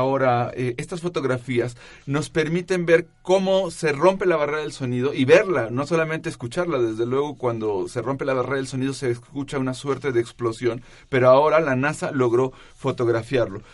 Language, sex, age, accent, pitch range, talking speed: Spanish, male, 40-59, Mexican, 125-155 Hz, 175 wpm